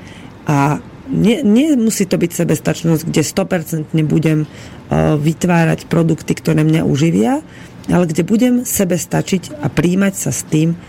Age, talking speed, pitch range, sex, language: 40-59, 125 wpm, 155-185 Hz, female, Slovak